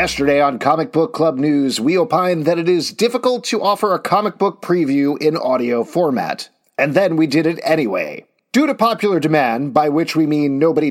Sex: male